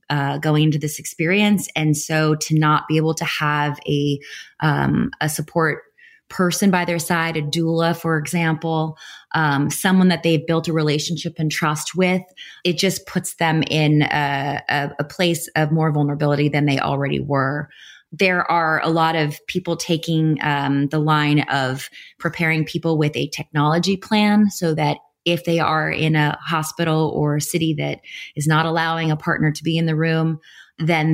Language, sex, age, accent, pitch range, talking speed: English, female, 20-39, American, 150-165 Hz, 175 wpm